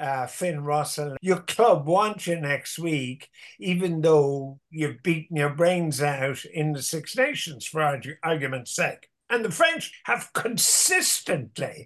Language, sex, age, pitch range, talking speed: English, male, 60-79, 150-190 Hz, 145 wpm